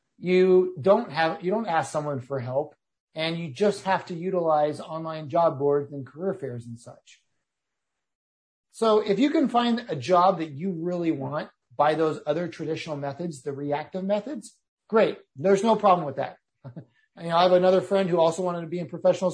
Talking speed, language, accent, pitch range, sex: 185 wpm, English, American, 150-195 Hz, male